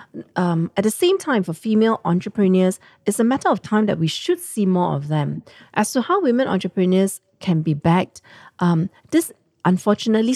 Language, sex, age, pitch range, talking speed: English, female, 40-59, 170-215 Hz, 180 wpm